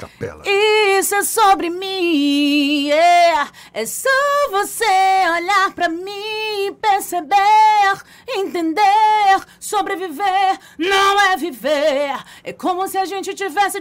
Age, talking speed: 30-49, 100 wpm